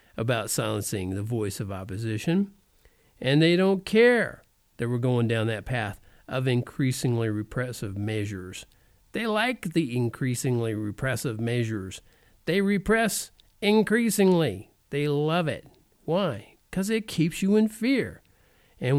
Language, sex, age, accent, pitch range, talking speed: English, male, 50-69, American, 110-175 Hz, 125 wpm